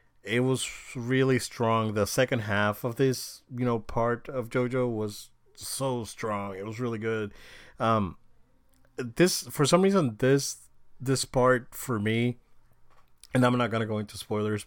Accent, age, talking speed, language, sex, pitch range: American, 30-49, 160 wpm, English, male, 105-130 Hz